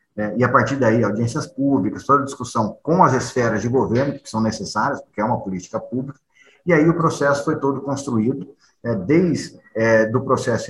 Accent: Brazilian